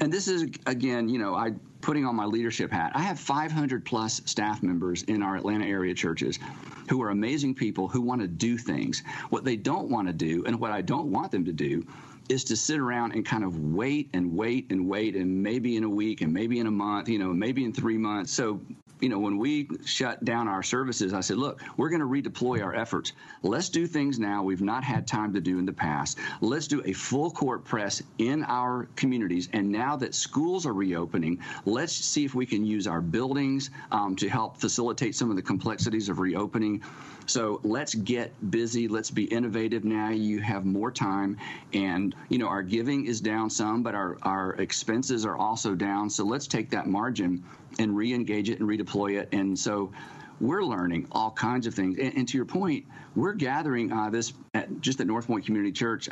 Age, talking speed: 50-69, 210 wpm